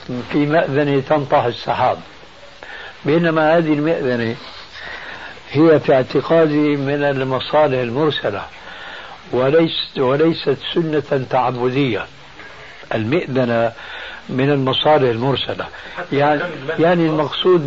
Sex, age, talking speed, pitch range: male, 60-79, 80 wpm, 125-155 Hz